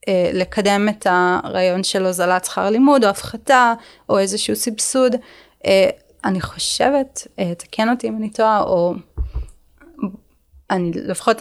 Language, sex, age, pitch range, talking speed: Hebrew, female, 20-39, 185-220 Hz, 115 wpm